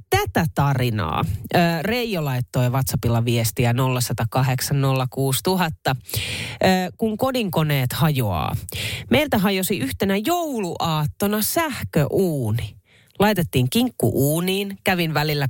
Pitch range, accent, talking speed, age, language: 125-200 Hz, native, 75 wpm, 30-49, Finnish